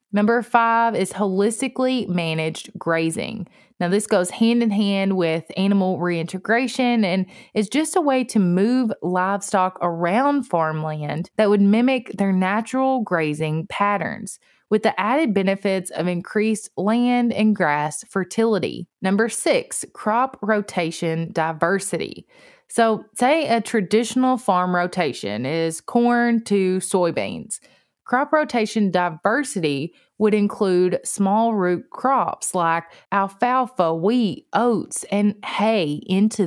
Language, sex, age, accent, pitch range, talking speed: English, female, 20-39, American, 180-230 Hz, 120 wpm